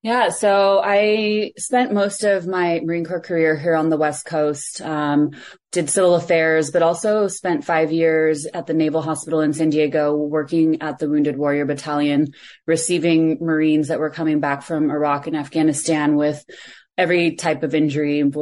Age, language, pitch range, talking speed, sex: 20-39, English, 150-170 Hz, 170 wpm, female